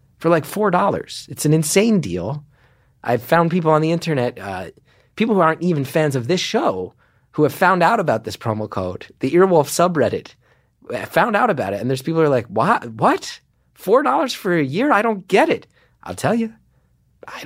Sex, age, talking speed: male, 30-49, 205 wpm